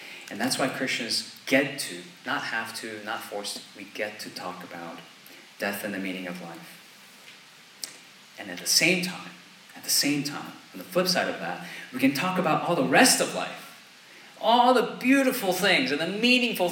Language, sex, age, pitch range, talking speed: English, male, 30-49, 125-195 Hz, 190 wpm